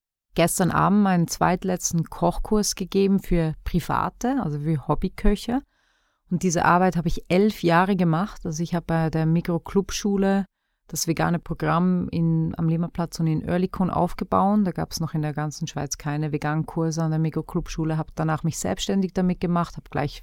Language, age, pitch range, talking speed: German, 30-49, 160-180 Hz, 170 wpm